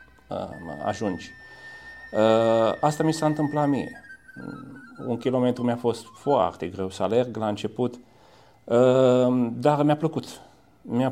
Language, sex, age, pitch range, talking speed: Romanian, male, 40-59, 105-125 Hz, 110 wpm